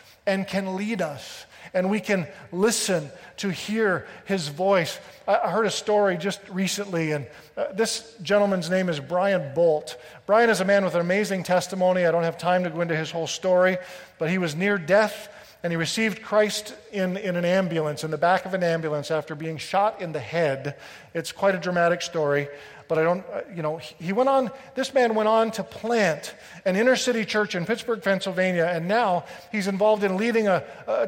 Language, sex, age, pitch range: English, male, 40-59, 165-210 Hz